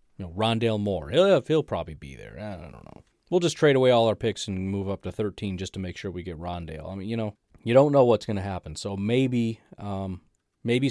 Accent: American